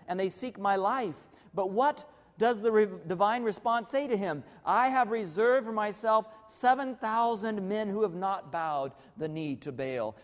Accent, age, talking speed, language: American, 40-59, 170 wpm, English